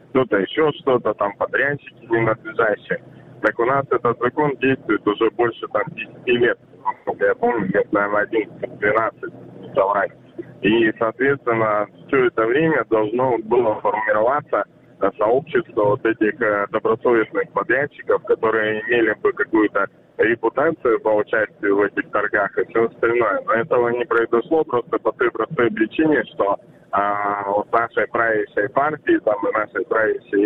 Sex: male